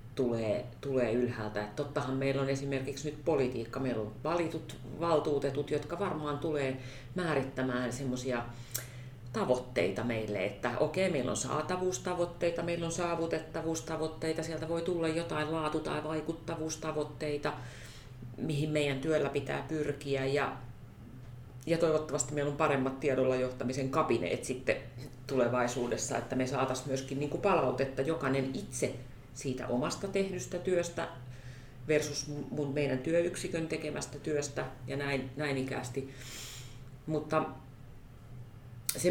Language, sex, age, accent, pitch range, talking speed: Finnish, female, 40-59, native, 125-150 Hz, 115 wpm